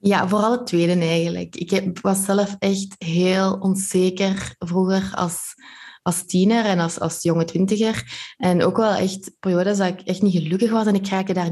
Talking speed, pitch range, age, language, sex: 180 wpm, 170-195 Hz, 20-39, Dutch, female